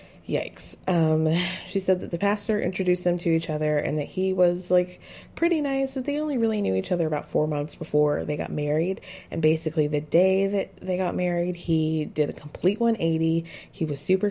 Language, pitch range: English, 150-180 Hz